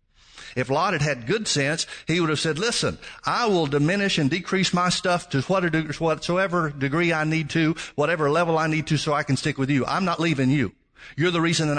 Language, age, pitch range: English, 60-79, 145-180 Hz